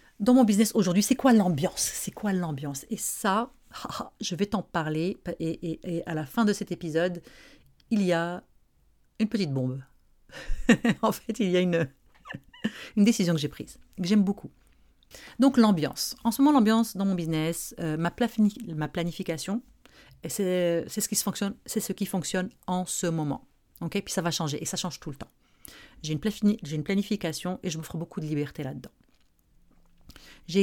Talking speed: 185 wpm